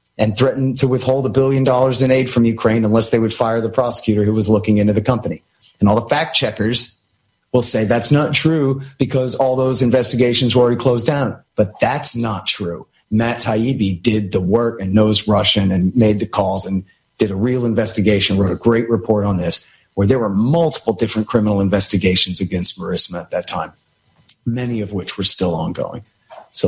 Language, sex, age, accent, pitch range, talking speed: English, male, 40-59, American, 105-135 Hz, 195 wpm